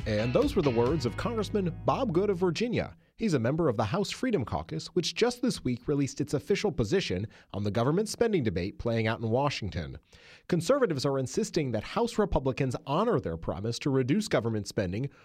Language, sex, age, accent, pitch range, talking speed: English, male, 30-49, American, 115-170 Hz, 195 wpm